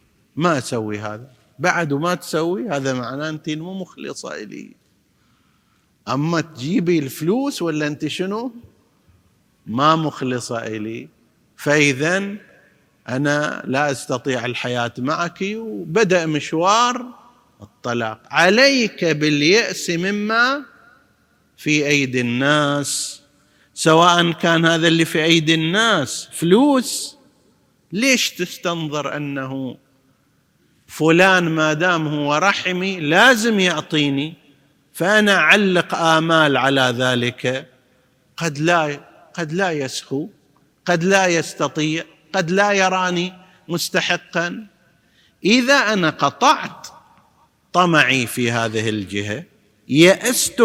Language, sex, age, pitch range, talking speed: Arabic, male, 50-69, 135-180 Hz, 95 wpm